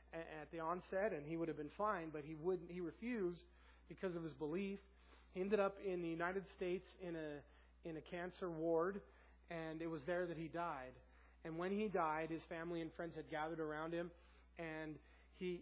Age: 30-49